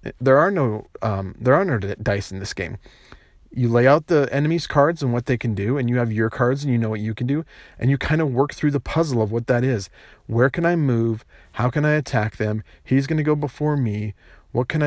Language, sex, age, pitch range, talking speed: English, male, 40-59, 105-135 Hz, 255 wpm